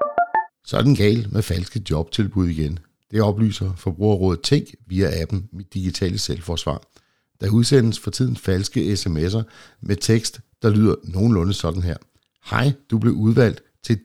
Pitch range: 90-115 Hz